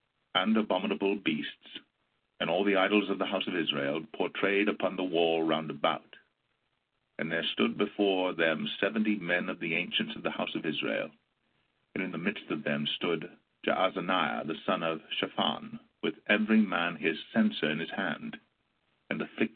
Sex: male